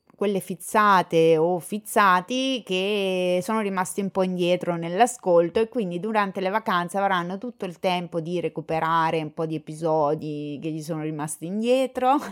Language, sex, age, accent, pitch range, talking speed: Italian, female, 20-39, native, 160-215 Hz, 150 wpm